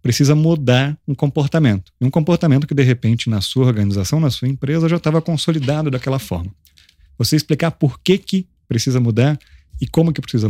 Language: Portuguese